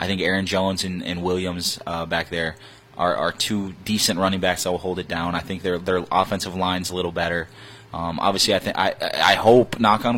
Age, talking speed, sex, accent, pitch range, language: 20-39, 225 wpm, male, American, 90-105 Hz, English